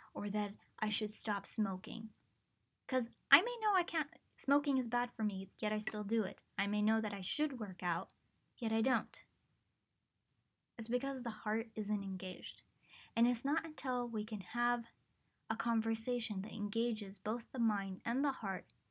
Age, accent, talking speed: 10-29, American, 180 wpm